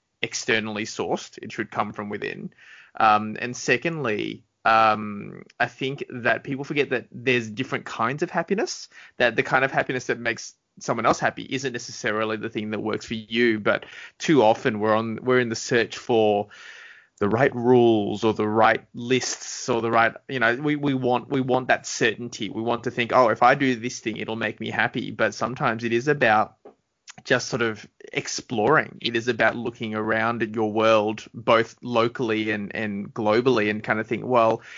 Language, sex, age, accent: English, male, 20-39, Australian